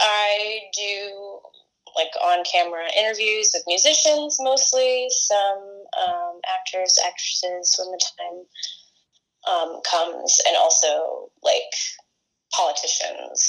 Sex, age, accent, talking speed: female, 20-39, American, 95 wpm